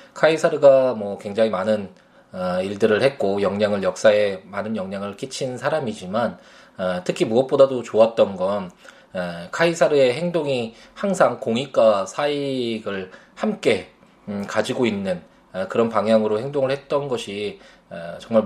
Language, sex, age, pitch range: Korean, male, 20-39, 105-145 Hz